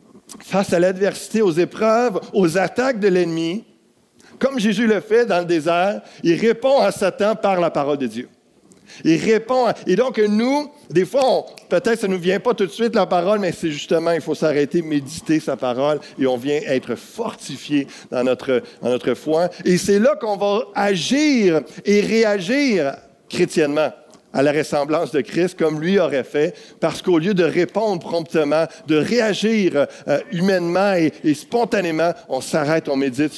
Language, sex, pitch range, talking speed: French, male, 145-210 Hz, 180 wpm